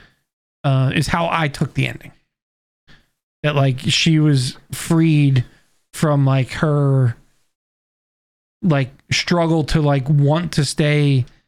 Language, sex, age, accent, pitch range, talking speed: English, male, 20-39, American, 135-170 Hz, 115 wpm